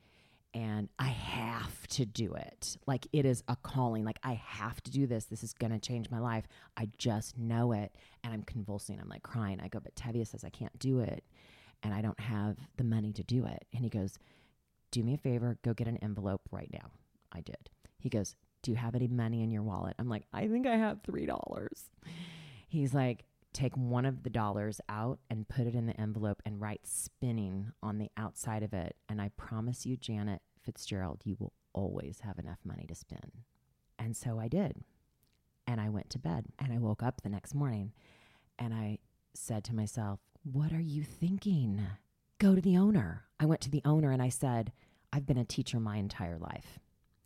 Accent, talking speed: American, 210 wpm